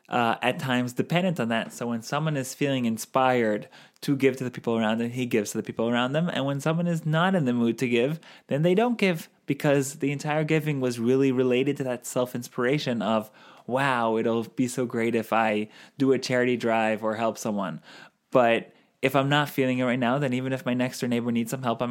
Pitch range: 120-145 Hz